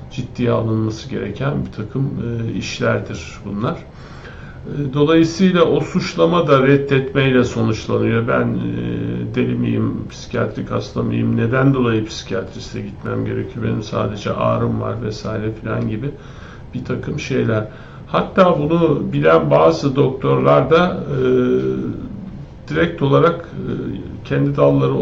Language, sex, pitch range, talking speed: Turkish, male, 110-145 Hz, 120 wpm